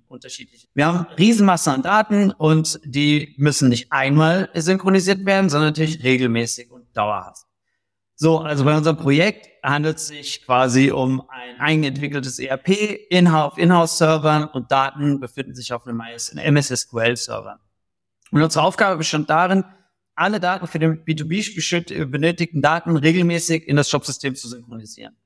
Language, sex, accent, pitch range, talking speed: German, male, German, 135-175 Hz, 140 wpm